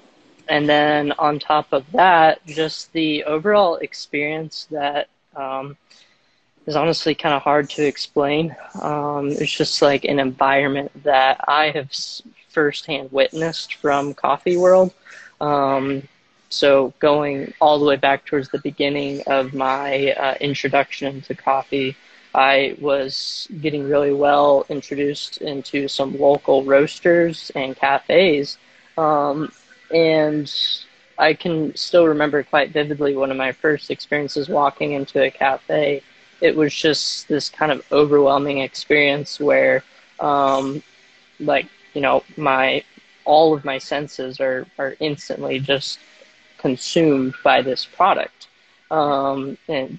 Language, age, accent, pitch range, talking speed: English, 20-39, American, 135-150 Hz, 125 wpm